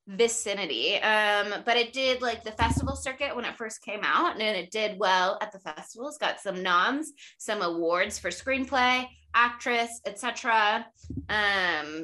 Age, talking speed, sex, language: 20-39, 155 wpm, female, English